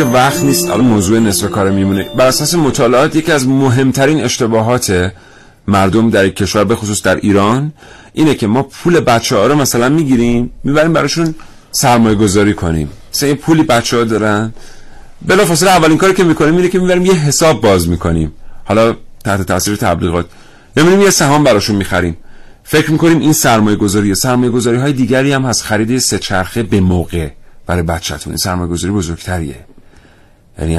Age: 40-59